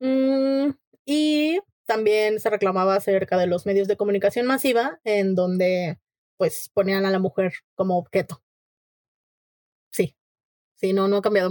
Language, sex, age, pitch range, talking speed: Spanish, female, 20-39, 195-255 Hz, 140 wpm